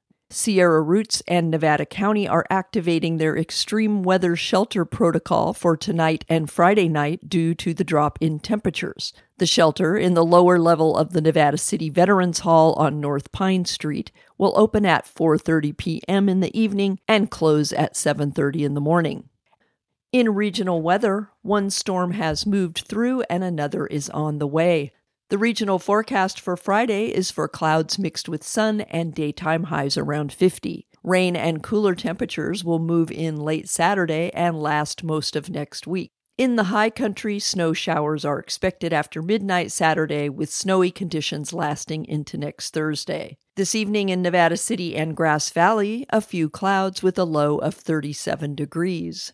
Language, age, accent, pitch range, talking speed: English, 50-69, American, 155-195 Hz, 165 wpm